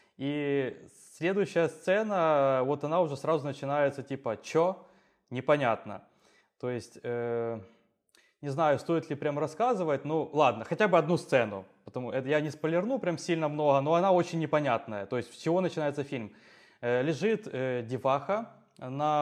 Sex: male